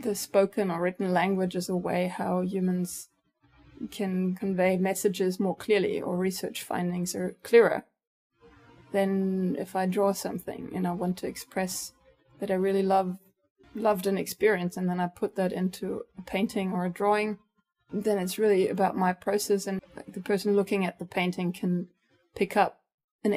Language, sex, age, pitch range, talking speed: English, female, 20-39, 185-210 Hz, 165 wpm